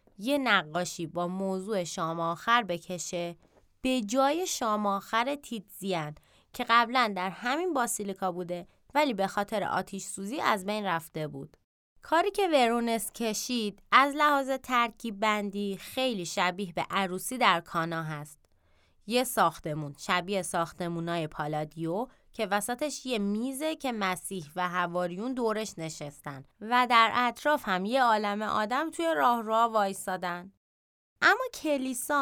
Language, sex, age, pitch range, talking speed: Persian, female, 20-39, 185-245 Hz, 125 wpm